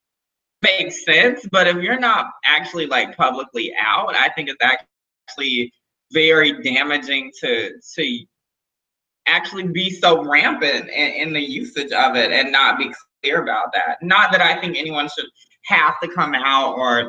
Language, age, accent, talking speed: English, 20-39, American, 160 wpm